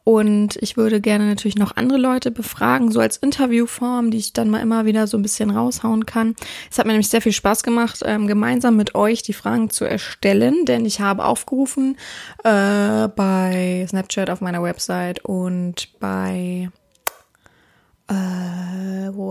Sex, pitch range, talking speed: female, 200-235 Hz, 160 wpm